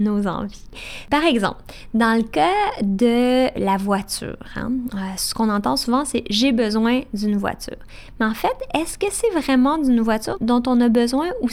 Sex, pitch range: female, 220-280 Hz